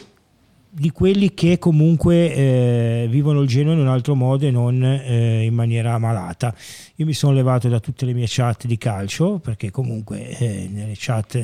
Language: Italian